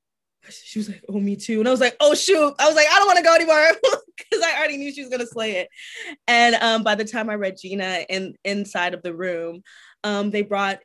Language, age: English, 20-39